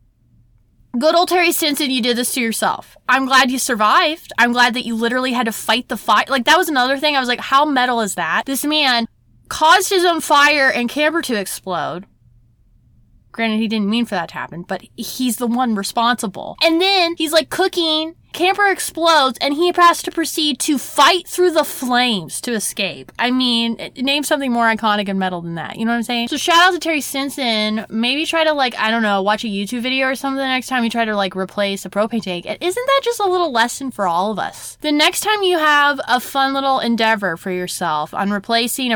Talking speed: 225 wpm